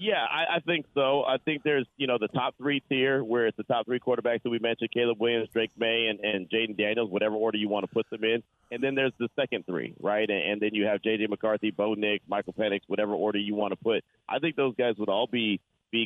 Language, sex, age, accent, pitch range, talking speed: English, male, 40-59, American, 100-120 Hz, 265 wpm